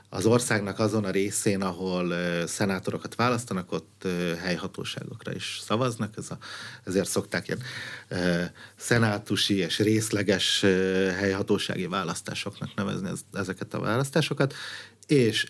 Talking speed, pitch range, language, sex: 95 wpm, 95-115 Hz, Hungarian, male